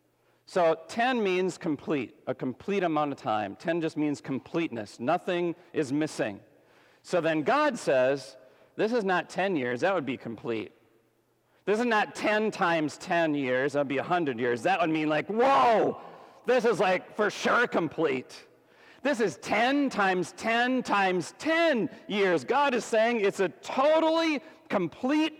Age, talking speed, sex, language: 40-59, 160 wpm, male, English